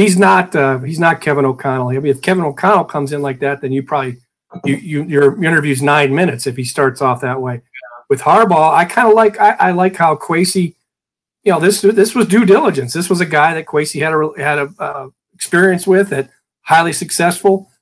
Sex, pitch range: male, 140-180 Hz